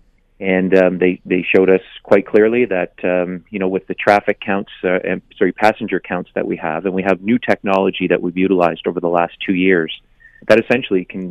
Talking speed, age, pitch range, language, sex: 205 wpm, 30-49, 90-105 Hz, English, male